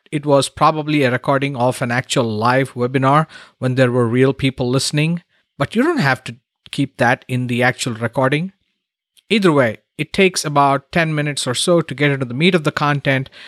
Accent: Indian